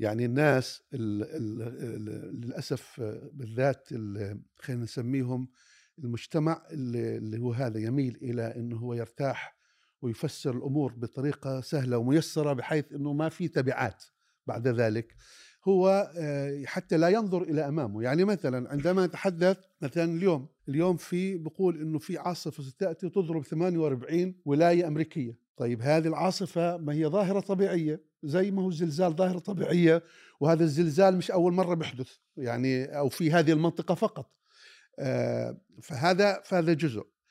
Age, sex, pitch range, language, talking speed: 50-69, male, 135-180 Hz, Arabic, 125 wpm